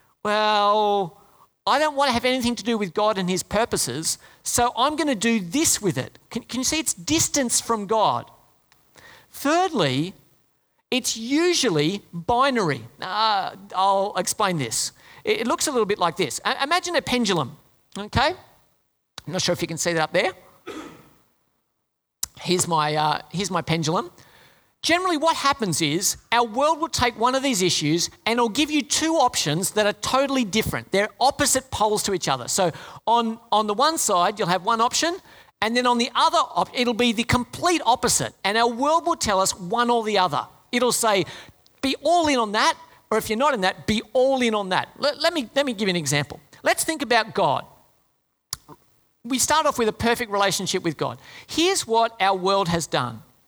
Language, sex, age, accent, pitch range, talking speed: English, male, 40-59, Australian, 185-265 Hz, 190 wpm